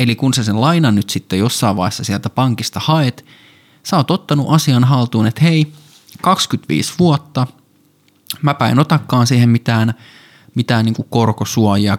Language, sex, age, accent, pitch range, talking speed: Finnish, male, 20-39, native, 110-150 Hz, 145 wpm